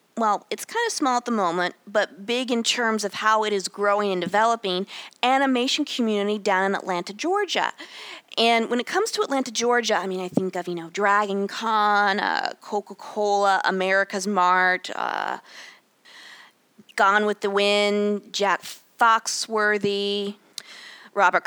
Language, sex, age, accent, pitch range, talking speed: English, female, 20-39, American, 190-250 Hz, 150 wpm